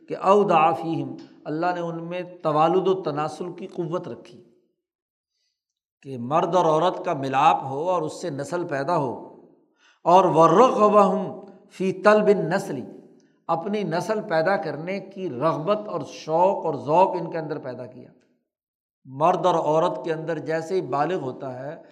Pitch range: 160-205 Hz